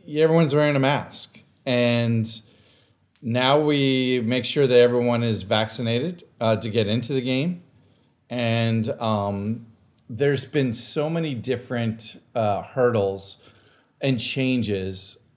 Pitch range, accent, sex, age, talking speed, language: 110-130 Hz, American, male, 40-59, 115 wpm, English